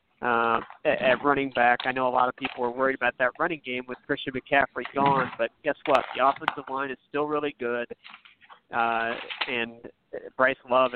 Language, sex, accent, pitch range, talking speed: English, male, American, 125-145 Hz, 185 wpm